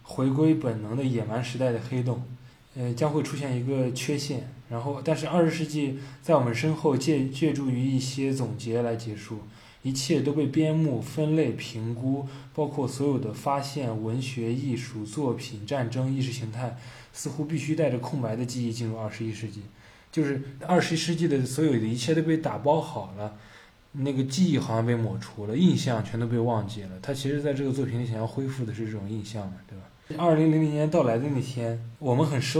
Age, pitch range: 20-39, 115-145 Hz